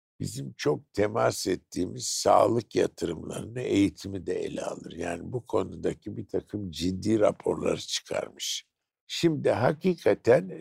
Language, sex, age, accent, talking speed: Turkish, male, 60-79, native, 115 wpm